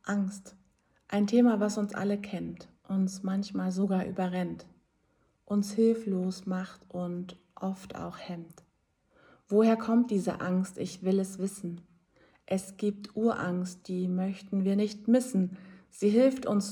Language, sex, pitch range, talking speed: German, female, 185-210 Hz, 135 wpm